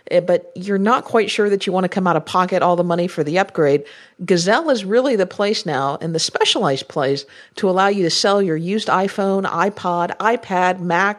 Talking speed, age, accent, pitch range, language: 215 wpm, 50-69, American, 170-225 Hz, English